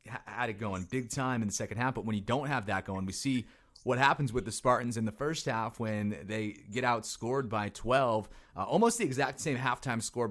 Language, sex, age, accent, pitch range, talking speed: English, male, 30-49, American, 105-135 Hz, 235 wpm